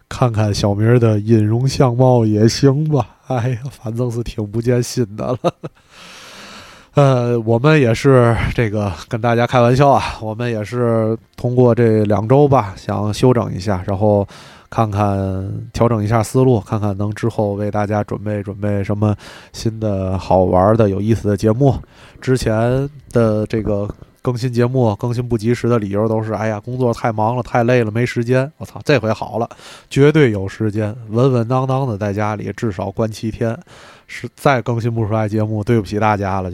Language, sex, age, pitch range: Chinese, male, 20-39, 105-120 Hz